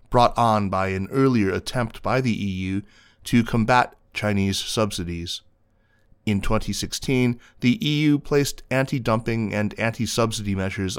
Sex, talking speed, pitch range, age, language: male, 120 wpm, 95-120 Hz, 30-49, English